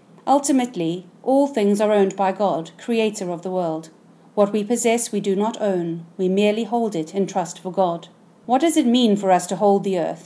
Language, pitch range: English, 185-230 Hz